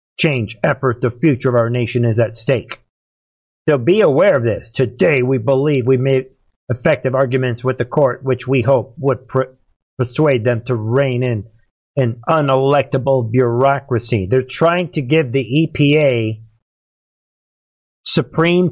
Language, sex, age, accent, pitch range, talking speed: English, male, 50-69, American, 125-170 Hz, 140 wpm